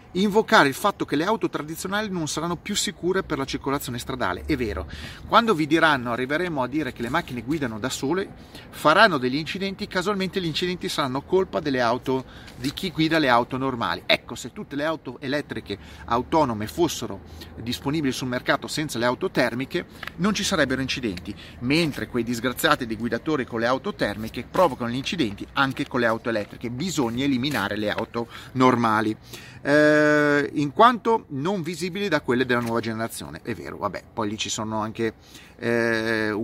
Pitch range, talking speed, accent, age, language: 115-155 Hz, 175 wpm, native, 30-49, Italian